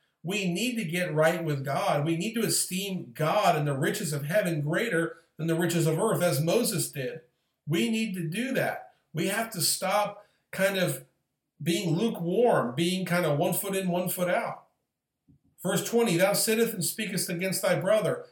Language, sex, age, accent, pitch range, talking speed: English, male, 50-69, American, 160-210 Hz, 185 wpm